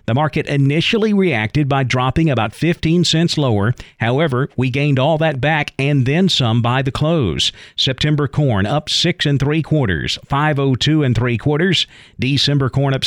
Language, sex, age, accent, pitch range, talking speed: English, male, 50-69, American, 120-155 Hz, 165 wpm